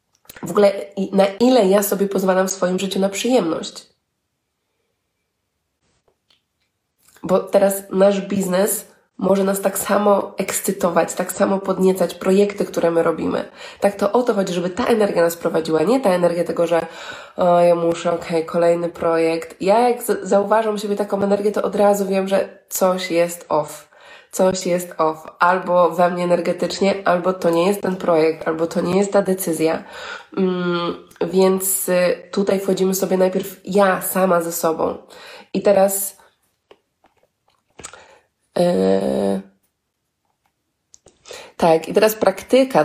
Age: 20-39